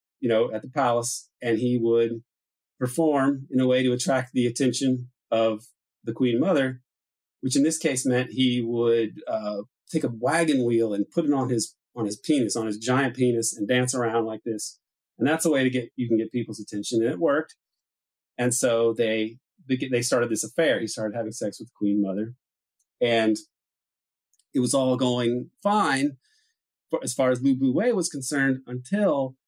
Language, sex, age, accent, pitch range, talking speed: English, male, 40-59, American, 115-140 Hz, 190 wpm